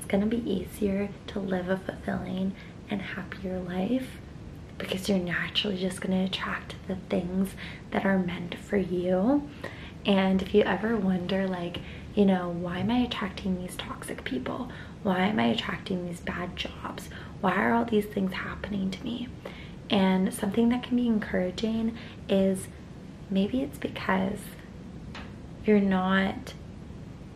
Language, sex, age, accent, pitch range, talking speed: English, female, 20-39, American, 185-215 Hz, 145 wpm